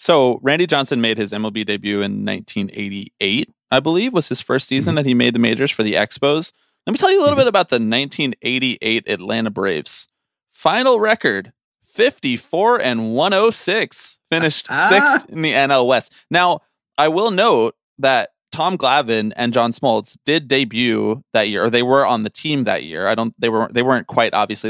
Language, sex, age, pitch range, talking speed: English, male, 20-39, 110-155 Hz, 185 wpm